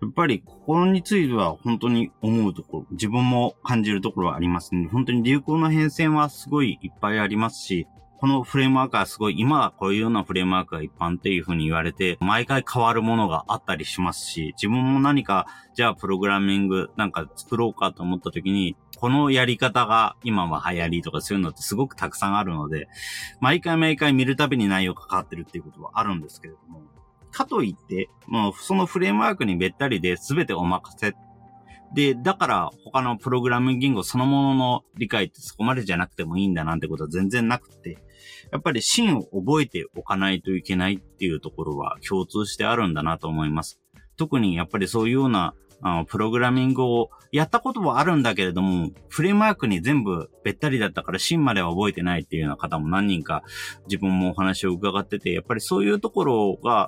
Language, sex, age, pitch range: Japanese, male, 40-59, 90-130 Hz